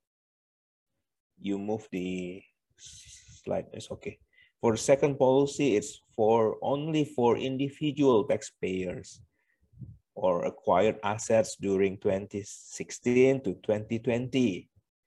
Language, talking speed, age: English, 95 wpm, 30-49